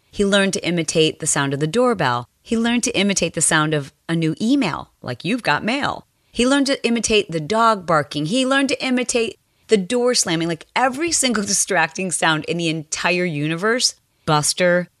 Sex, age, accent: female, 30-49, American